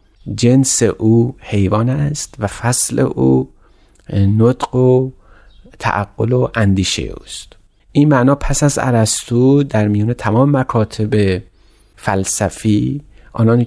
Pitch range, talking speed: 105-130 Hz, 110 wpm